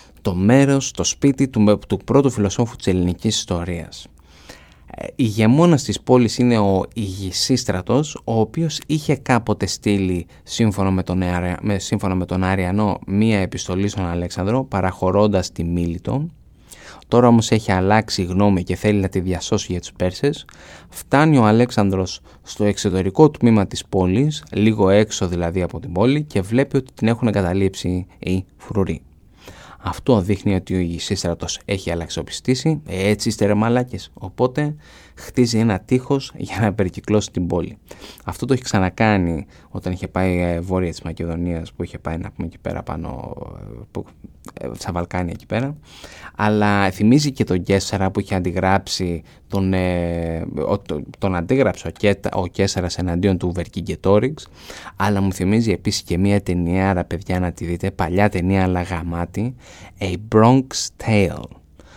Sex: male